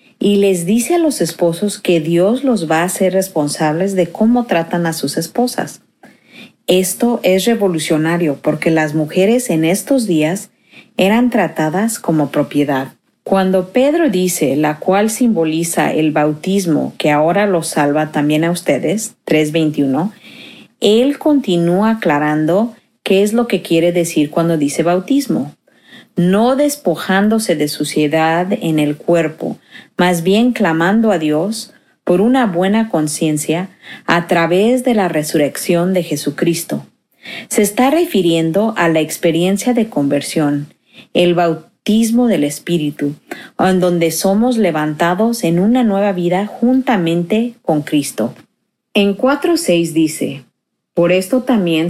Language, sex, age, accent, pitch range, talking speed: Spanish, female, 40-59, Mexican, 160-215 Hz, 130 wpm